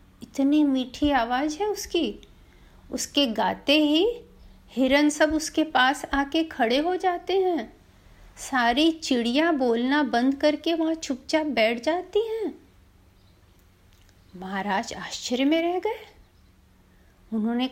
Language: Hindi